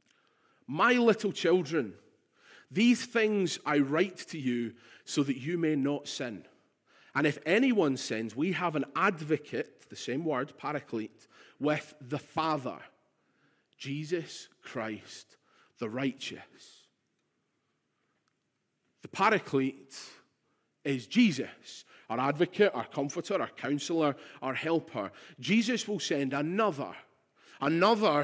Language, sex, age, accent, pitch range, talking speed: English, male, 40-59, British, 140-190 Hz, 110 wpm